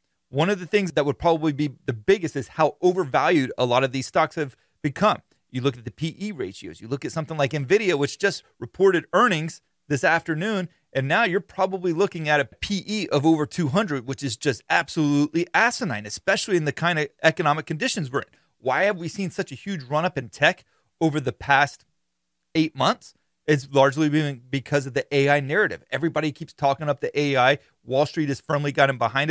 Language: English